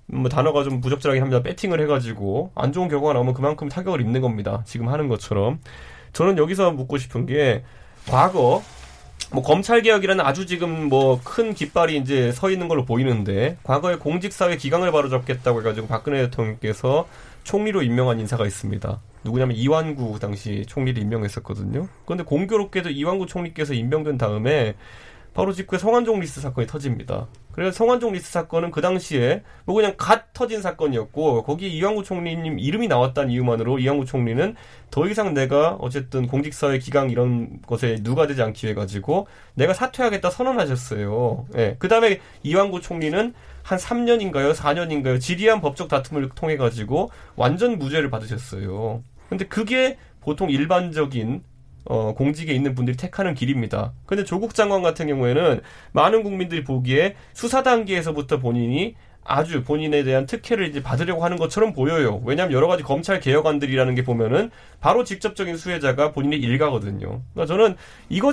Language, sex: Korean, male